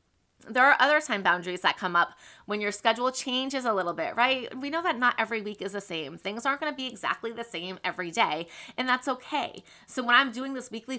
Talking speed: 240 wpm